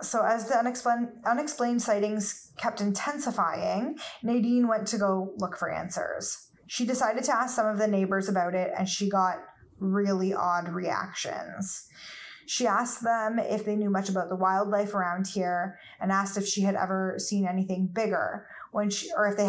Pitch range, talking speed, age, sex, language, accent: 190-215 Hz, 170 wpm, 20-39, female, English, American